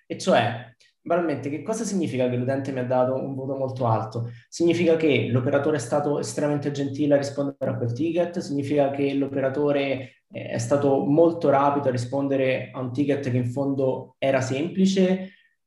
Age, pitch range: 20-39, 125-145 Hz